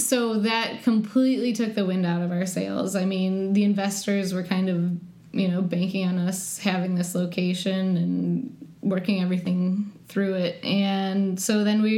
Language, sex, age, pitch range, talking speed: English, female, 20-39, 180-210 Hz, 170 wpm